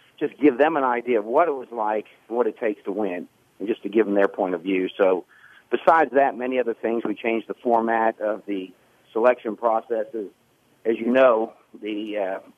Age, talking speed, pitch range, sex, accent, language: 50-69, 205 wpm, 105-120 Hz, male, American, English